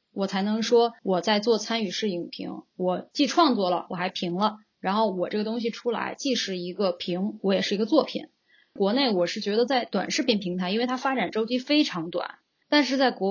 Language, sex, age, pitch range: Chinese, female, 20-39, 190-245 Hz